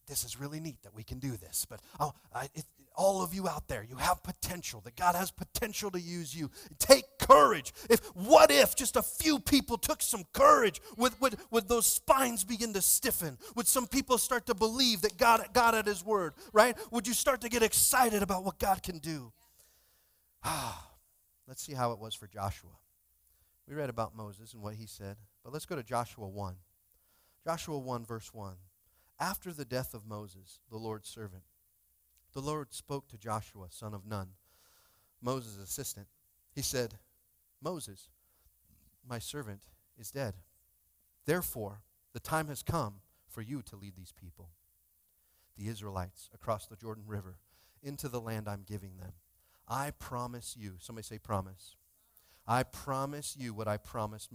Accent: American